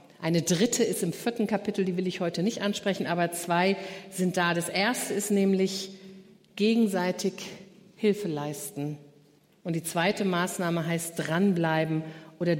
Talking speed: 145 wpm